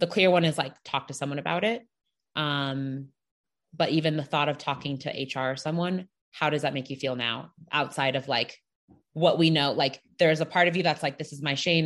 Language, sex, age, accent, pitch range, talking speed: English, female, 20-39, American, 140-170 Hz, 235 wpm